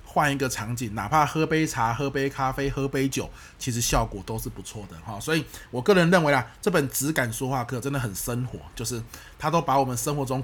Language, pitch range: Chinese, 110-145 Hz